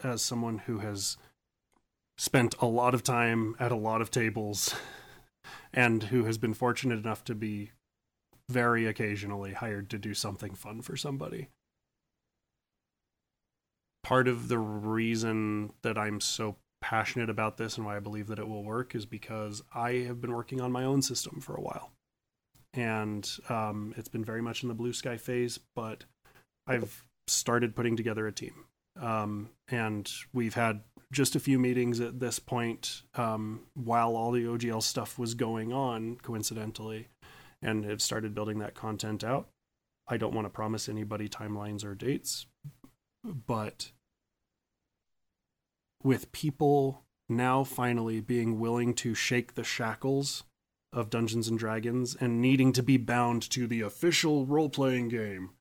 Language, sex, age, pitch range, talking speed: English, male, 30-49, 110-125 Hz, 150 wpm